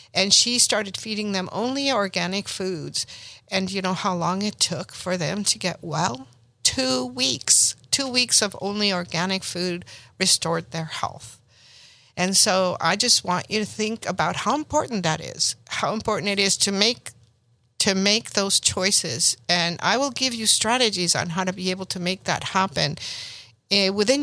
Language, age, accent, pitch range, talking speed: English, 60-79, American, 160-205 Hz, 175 wpm